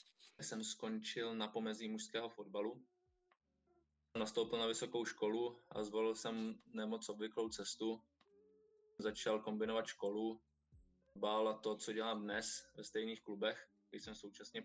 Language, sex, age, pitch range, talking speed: Czech, male, 20-39, 110-125 Hz, 125 wpm